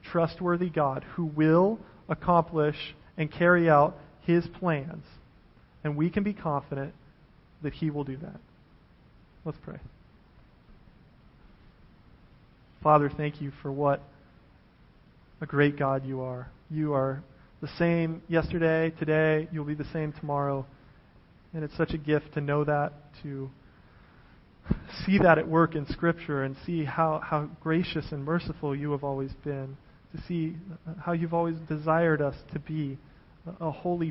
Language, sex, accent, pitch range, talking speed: English, male, American, 145-165 Hz, 140 wpm